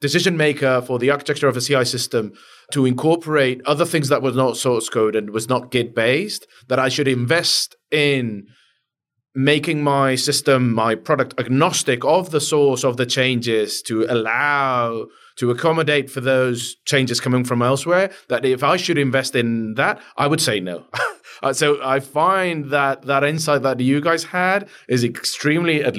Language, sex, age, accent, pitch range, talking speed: English, male, 30-49, British, 120-145 Hz, 170 wpm